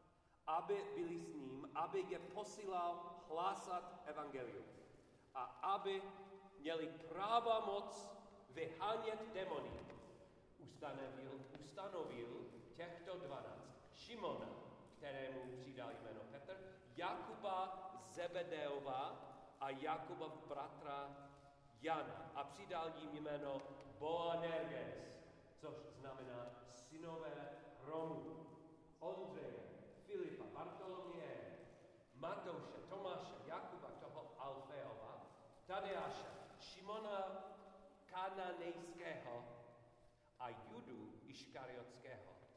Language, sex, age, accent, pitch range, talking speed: Czech, male, 40-59, native, 135-190 Hz, 75 wpm